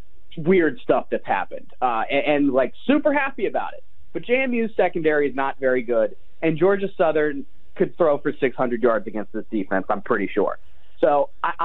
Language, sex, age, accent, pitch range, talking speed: English, male, 30-49, American, 135-200 Hz, 180 wpm